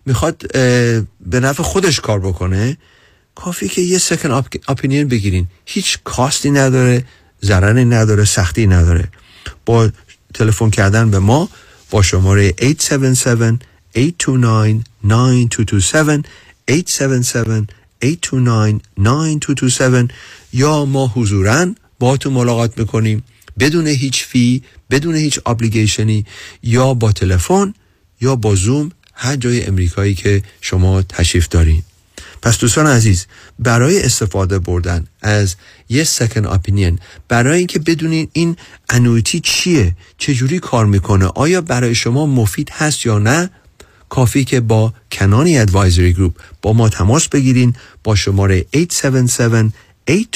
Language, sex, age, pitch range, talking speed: Persian, male, 50-69, 100-135 Hz, 115 wpm